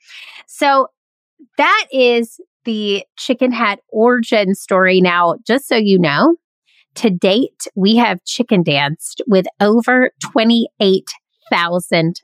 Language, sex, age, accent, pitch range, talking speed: English, female, 30-49, American, 180-250 Hz, 110 wpm